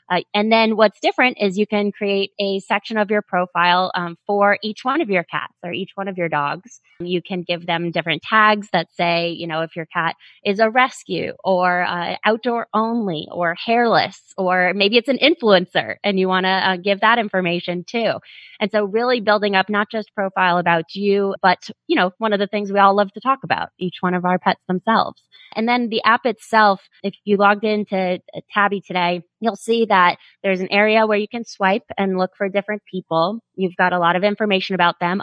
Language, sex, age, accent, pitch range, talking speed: English, female, 20-39, American, 180-220 Hz, 215 wpm